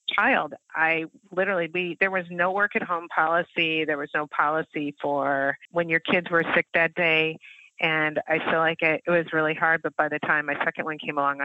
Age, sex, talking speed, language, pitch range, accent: 30-49, female, 215 wpm, English, 150-175 Hz, American